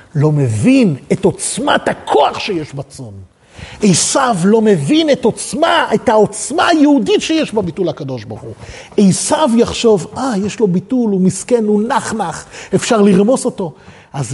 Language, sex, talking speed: Hebrew, male, 140 wpm